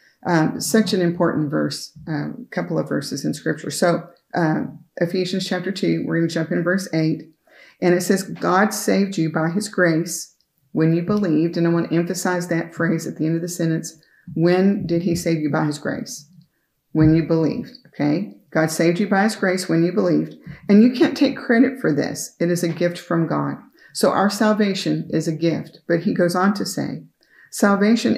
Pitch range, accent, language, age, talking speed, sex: 160-185 Hz, American, English, 40-59, 200 wpm, female